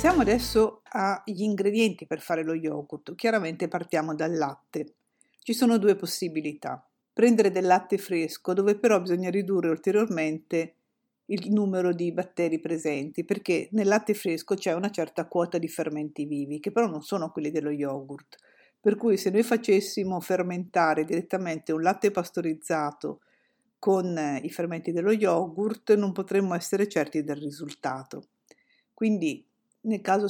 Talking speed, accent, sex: 145 wpm, native, female